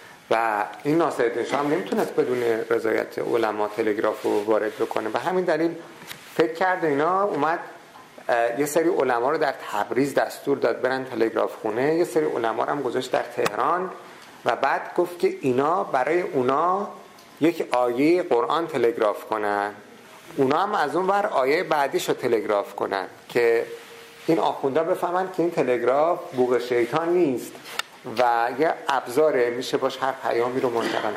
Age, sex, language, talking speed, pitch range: 50-69, male, Persian, 160 wpm, 125-175 Hz